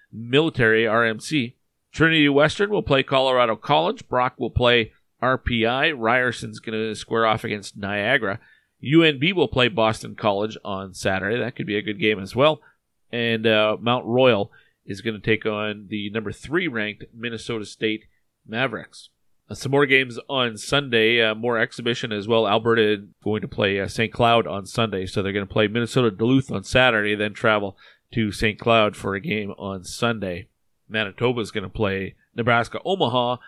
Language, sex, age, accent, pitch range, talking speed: English, male, 40-59, American, 110-140 Hz, 175 wpm